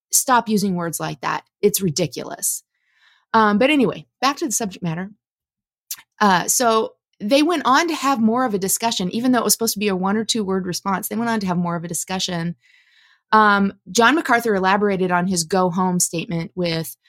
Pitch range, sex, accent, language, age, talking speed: 190-255 Hz, female, American, English, 30-49, 205 wpm